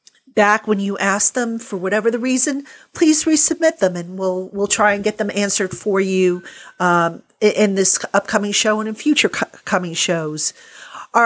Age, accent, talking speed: 40-59, American, 180 wpm